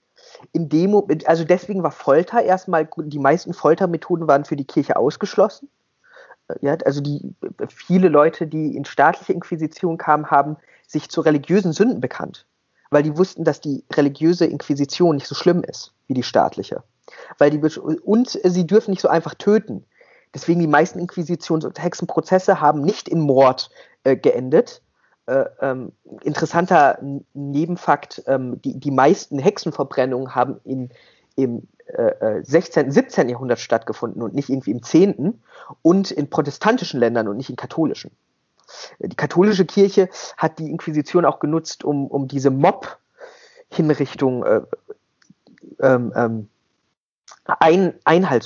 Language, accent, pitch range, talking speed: German, German, 140-185 Hz, 135 wpm